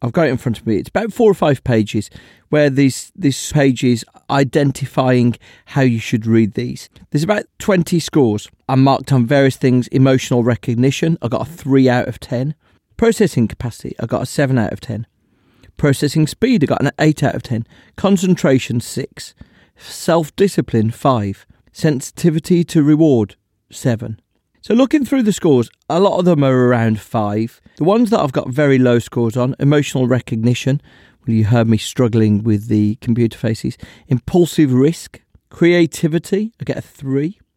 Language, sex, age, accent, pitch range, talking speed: English, male, 40-59, British, 115-155 Hz, 170 wpm